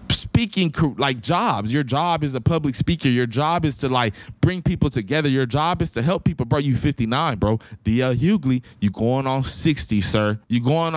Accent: American